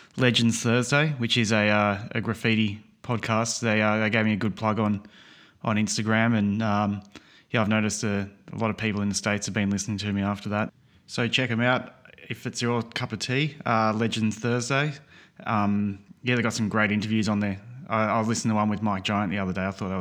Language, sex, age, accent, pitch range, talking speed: English, male, 20-39, Australian, 105-120 Hz, 230 wpm